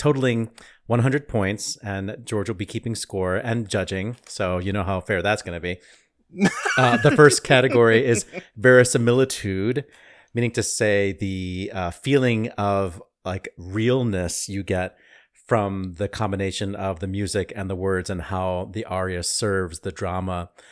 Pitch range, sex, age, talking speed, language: 95-115 Hz, male, 40-59, 155 wpm, English